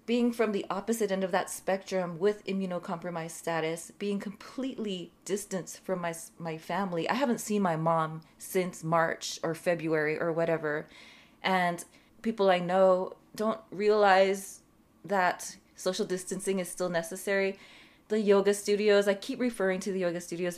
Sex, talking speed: female, 150 wpm